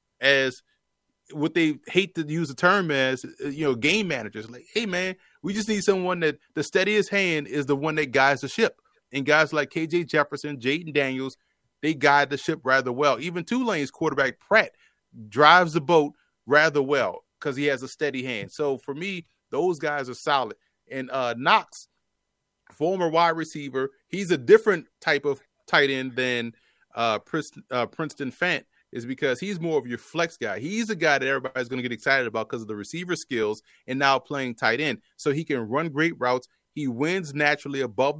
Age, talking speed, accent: 30-49, 190 wpm, American